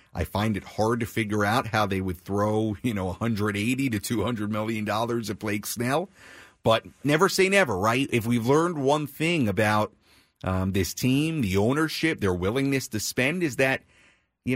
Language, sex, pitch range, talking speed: English, male, 95-140 Hz, 175 wpm